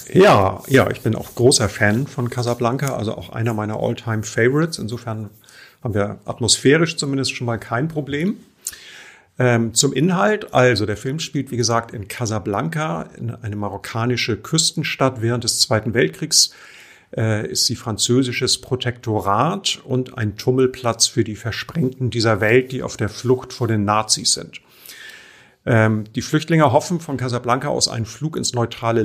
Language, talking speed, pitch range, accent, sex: German, 150 wpm, 110-130 Hz, German, male